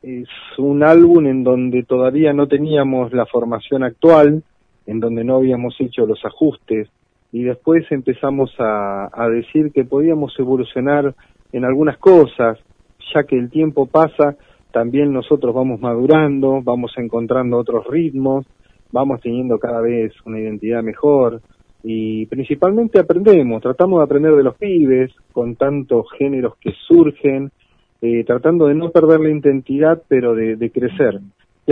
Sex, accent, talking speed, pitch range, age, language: male, Argentinian, 145 wpm, 115-145 Hz, 40-59, Spanish